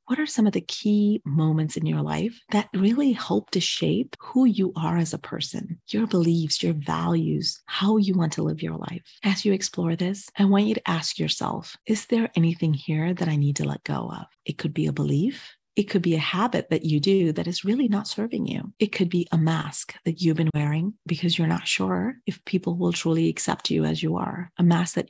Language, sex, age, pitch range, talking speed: English, female, 30-49, 160-200 Hz, 230 wpm